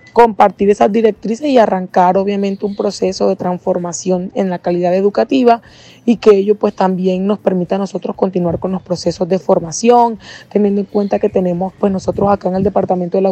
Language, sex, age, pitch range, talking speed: Spanish, female, 20-39, 185-215 Hz, 190 wpm